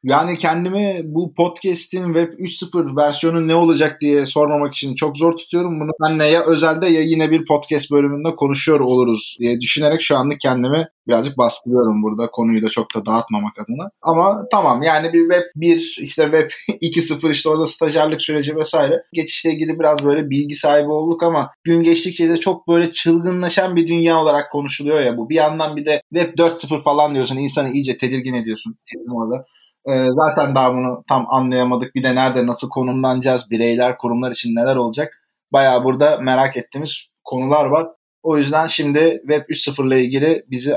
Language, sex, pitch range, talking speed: Turkish, male, 130-165 Hz, 170 wpm